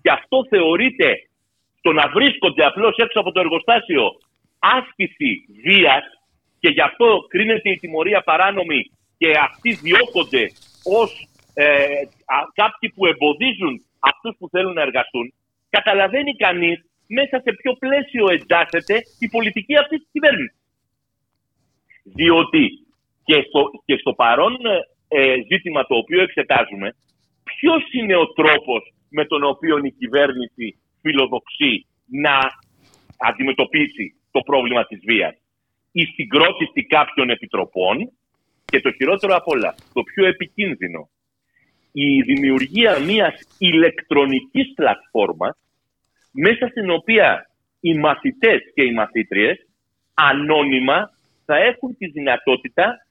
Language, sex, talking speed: Greek, male, 115 wpm